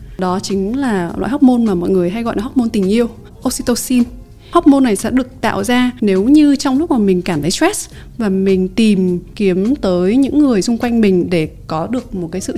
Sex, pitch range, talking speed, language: female, 190-255 Hz, 220 wpm, Vietnamese